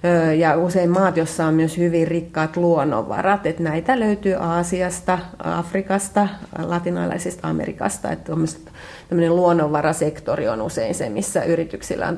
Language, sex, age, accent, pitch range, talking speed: Finnish, female, 30-49, native, 165-195 Hz, 120 wpm